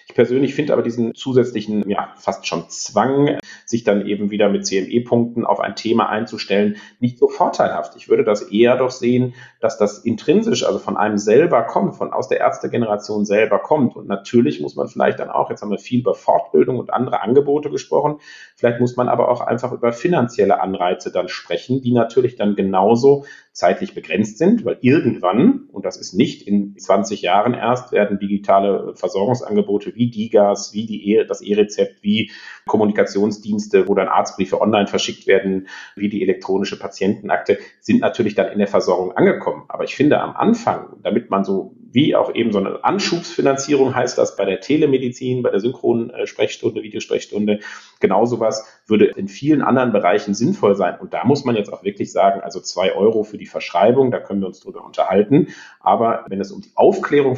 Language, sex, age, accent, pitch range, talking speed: German, male, 40-59, German, 105-135 Hz, 180 wpm